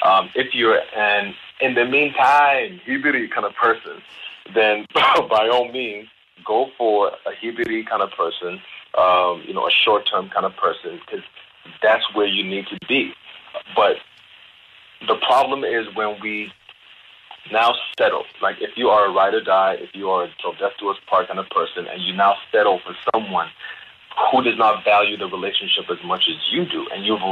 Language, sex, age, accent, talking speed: English, male, 30-49, American, 185 wpm